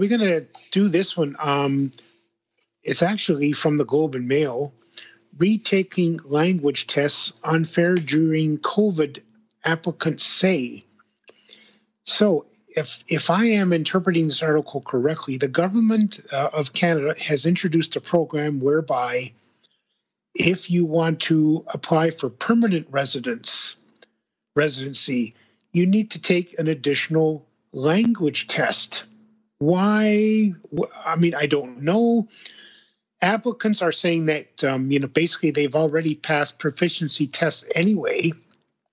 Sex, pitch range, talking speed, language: male, 145-185 Hz, 120 wpm, English